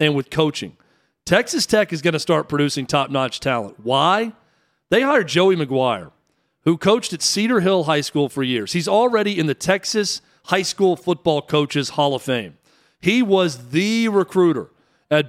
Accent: American